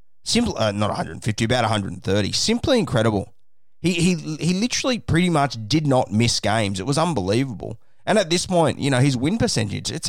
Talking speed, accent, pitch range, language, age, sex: 185 wpm, Australian, 100-135 Hz, English, 30-49, male